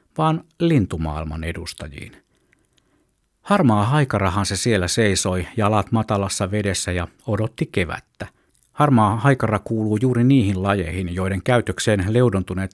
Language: Finnish